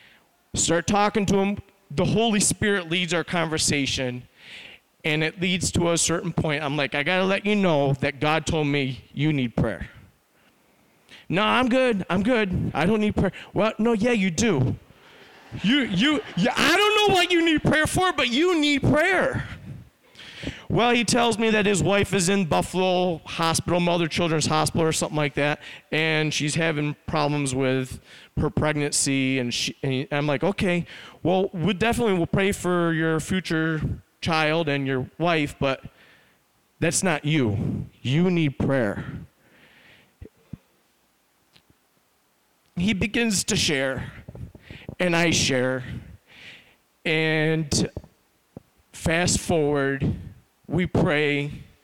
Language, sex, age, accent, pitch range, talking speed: English, male, 40-59, American, 145-195 Hz, 140 wpm